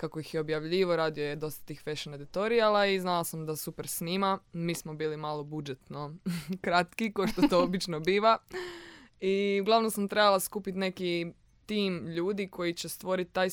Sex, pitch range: female, 155-190 Hz